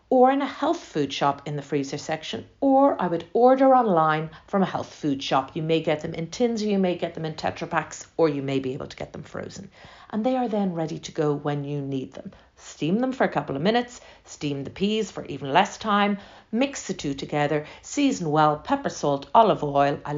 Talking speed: 235 wpm